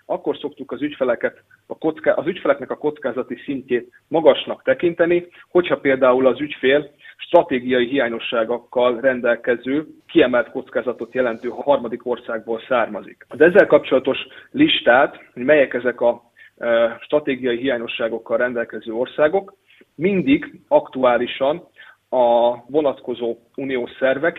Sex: male